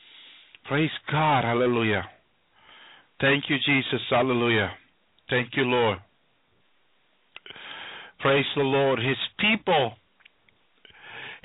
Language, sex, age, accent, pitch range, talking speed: English, male, 50-69, American, 155-220 Hz, 80 wpm